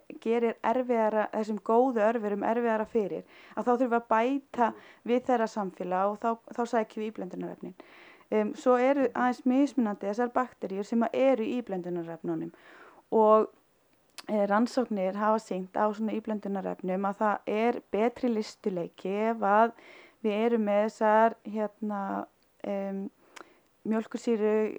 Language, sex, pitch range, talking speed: English, female, 210-245 Hz, 120 wpm